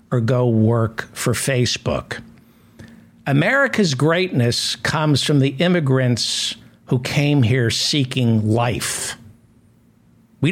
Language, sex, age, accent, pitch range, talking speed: English, male, 60-79, American, 115-140 Hz, 95 wpm